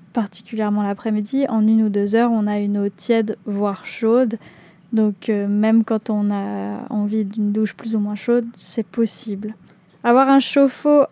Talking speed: 175 wpm